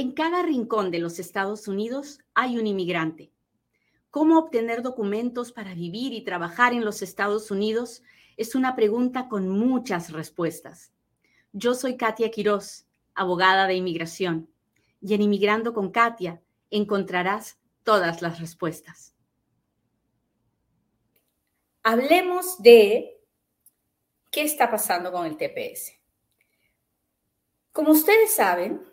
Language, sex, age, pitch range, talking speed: Spanish, female, 40-59, 190-245 Hz, 110 wpm